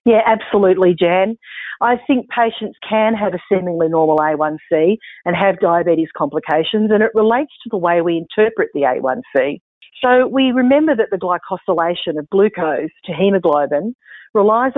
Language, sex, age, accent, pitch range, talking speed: English, female, 40-59, Australian, 160-210 Hz, 150 wpm